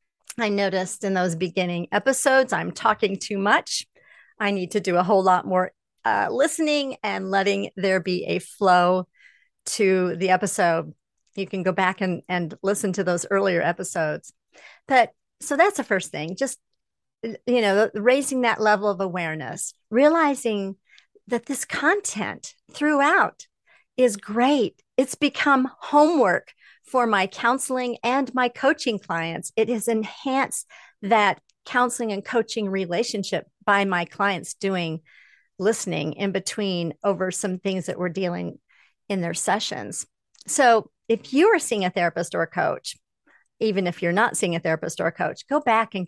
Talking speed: 155 wpm